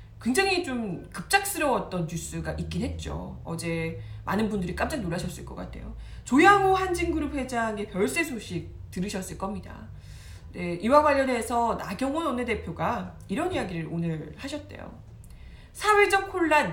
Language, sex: Korean, female